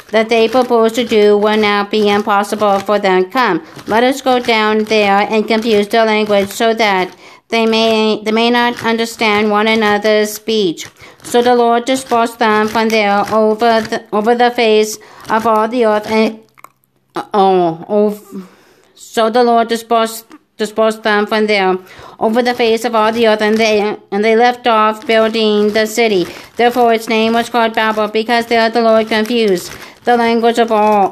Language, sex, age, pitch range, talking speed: English, female, 50-69, 210-230 Hz, 170 wpm